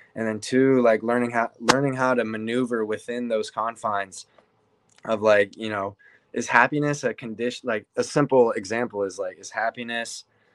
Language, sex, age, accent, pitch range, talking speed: English, male, 20-39, American, 105-125 Hz, 165 wpm